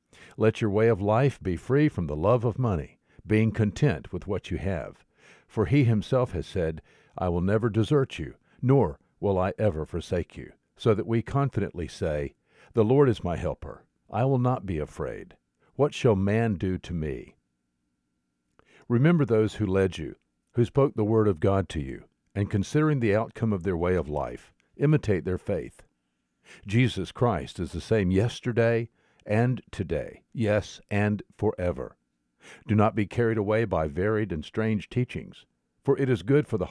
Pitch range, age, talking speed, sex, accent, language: 90-120 Hz, 50-69, 175 wpm, male, American, English